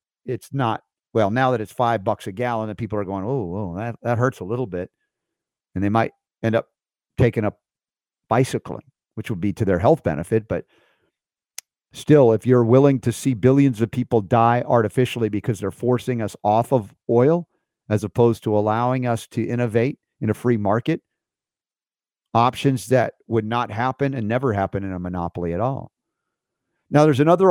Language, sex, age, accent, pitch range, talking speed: English, male, 50-69, American, 110-130 Hz, 180 wpm